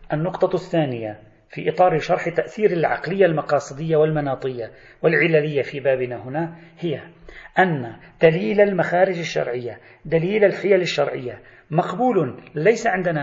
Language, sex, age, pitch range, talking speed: Arabic, male, 40-59, 135-175 Hz, 110 wpm